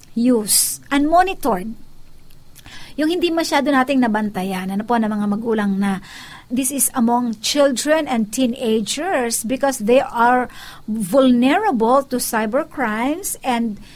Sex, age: female, 50-69